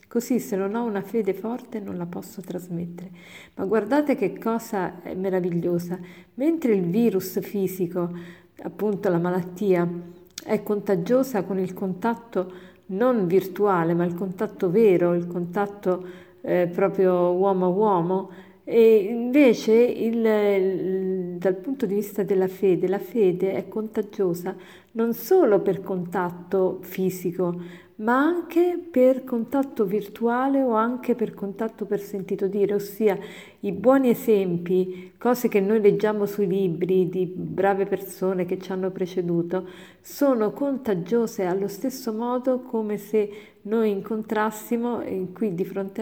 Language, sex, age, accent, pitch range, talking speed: Italian, female, 50-69, native, 185-220 Hz, 130 wpm